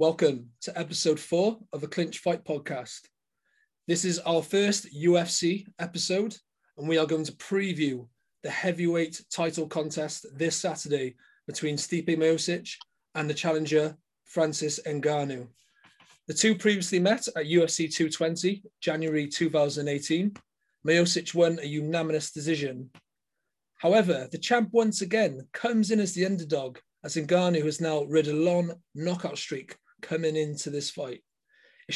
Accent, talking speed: British, 135 wpm